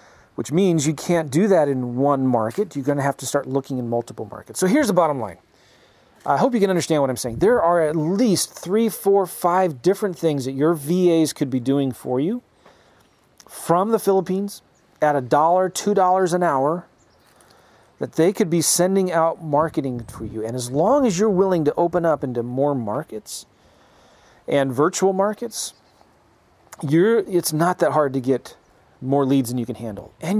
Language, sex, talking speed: English, male, 190 wpm